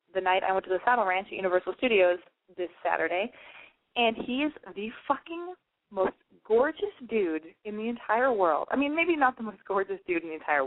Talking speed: 195 wpm